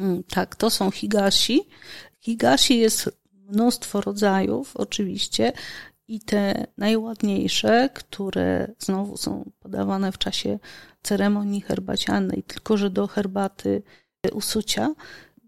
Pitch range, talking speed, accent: 195-225 Hz, 95 wpm, native